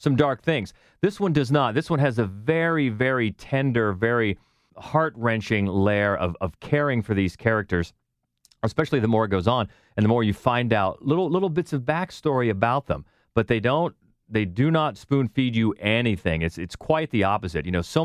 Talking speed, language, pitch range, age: 195 wpm, English, 95-130 Hz, 40-59